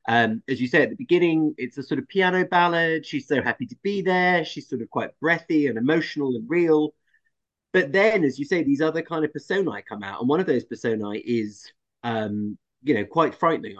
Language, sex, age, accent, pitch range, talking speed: English, male, 30-49, British, 115-160 Hz, 220 wpm